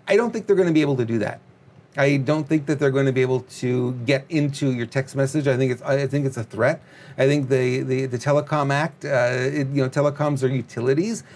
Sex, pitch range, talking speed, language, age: male, 135-170 Hz, 245 wpm, English, 40-59